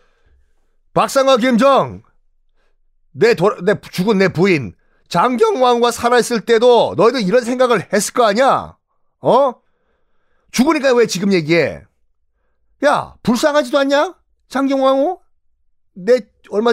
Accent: native